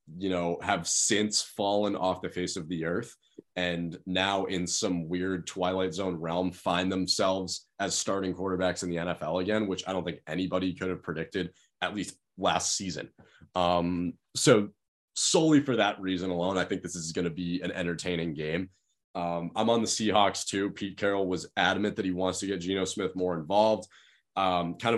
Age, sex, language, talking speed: 20-39, male, English, 185 wpm